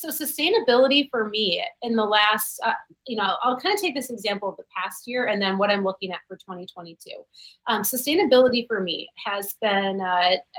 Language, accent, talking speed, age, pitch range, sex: English, American, 200 wpm, 30-49, 195-250 Hz, female